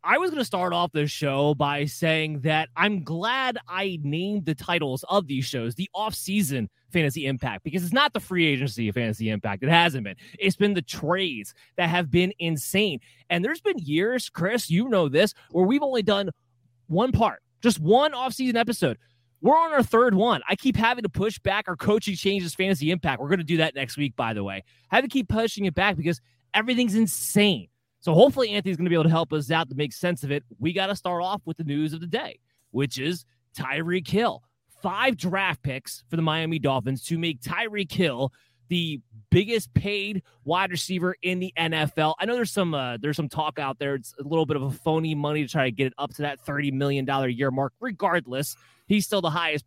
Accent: American